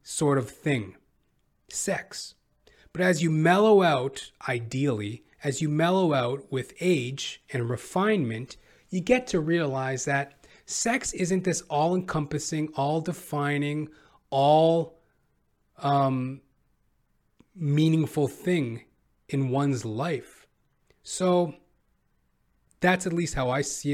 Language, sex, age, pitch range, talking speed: English, male, 30-49, 120-160 Hz, 100 wpm